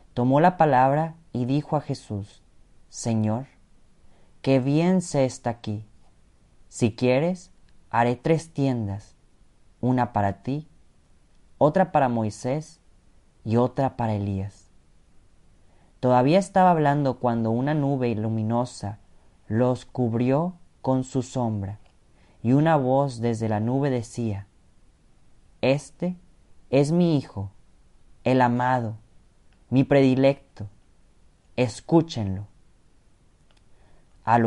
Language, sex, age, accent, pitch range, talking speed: Spanish, male, 30-49, Mexican, 105-140 Hz, 100 wpm